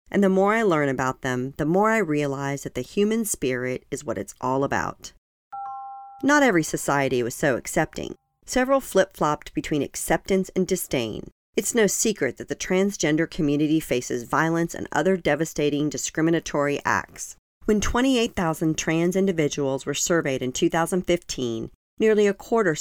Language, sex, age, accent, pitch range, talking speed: English, female, 40-59, American, 150-200 Hz, 150 wpm